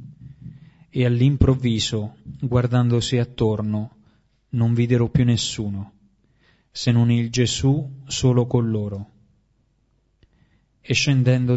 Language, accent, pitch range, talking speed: Italian, native, 110-130 Hz, 90 wpm